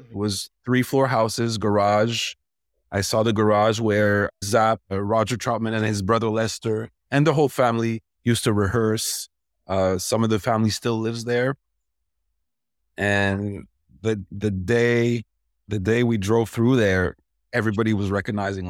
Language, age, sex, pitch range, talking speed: English, 30-49, male, 95-110 Hz, 150 wpm